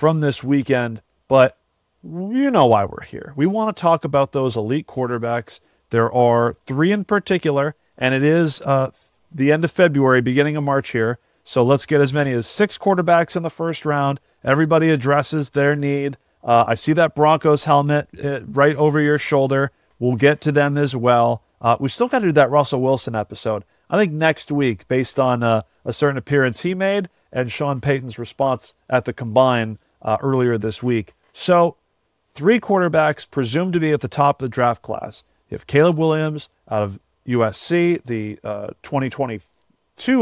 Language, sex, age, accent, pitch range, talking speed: English, male, 40-59, American, 120-155 Hz, 180 wpm